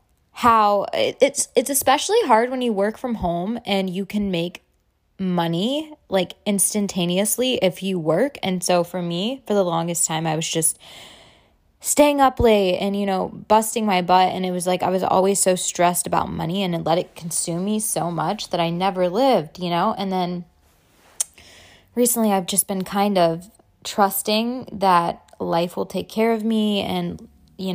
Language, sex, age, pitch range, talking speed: English, female, 20-39, 175-210 Hz, 175 wpm